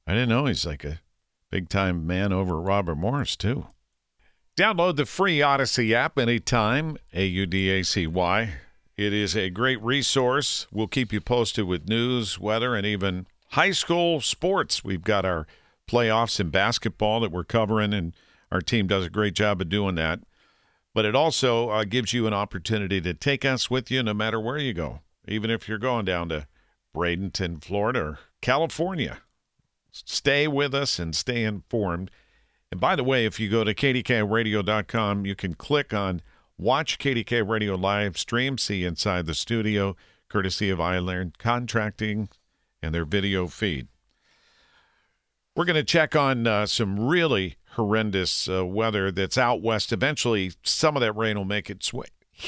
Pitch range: 95-120 Hz